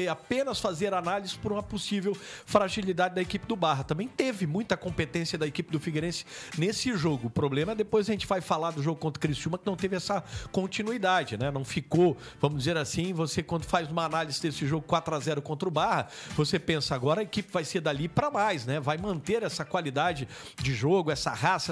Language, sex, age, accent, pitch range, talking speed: Portuguese, male, 40-59, Brazilian, 155-185 Hz, 205 wpm